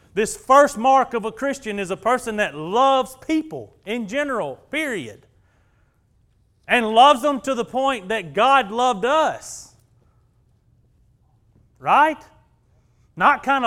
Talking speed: 125 wpm